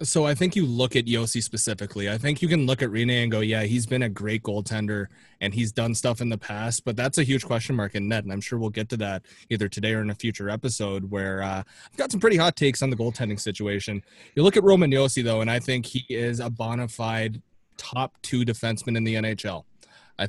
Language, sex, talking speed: English, male, 250 wpm